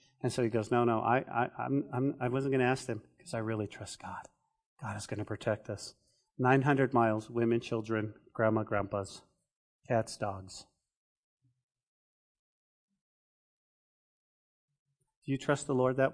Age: 30-49